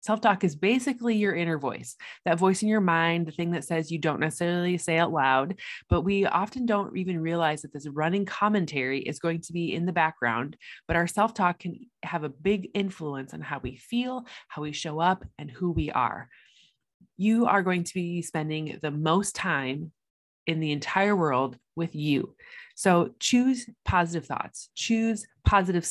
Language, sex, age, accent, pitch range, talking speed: English, female, 20-39, American, 155-200 Hz, 185 wpm